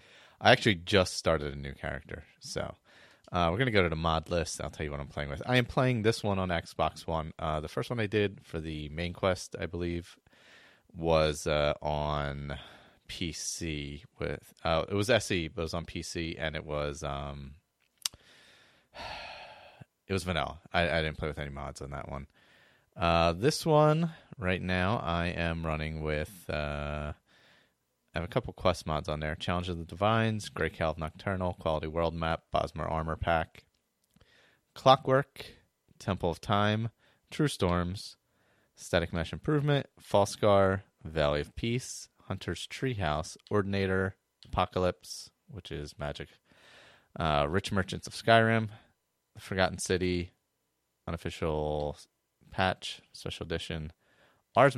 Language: English